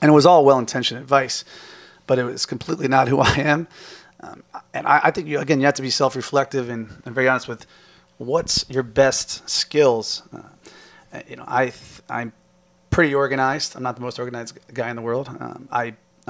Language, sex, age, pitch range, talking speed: English, male, 30-49, 120-140 Hz, 195 wpm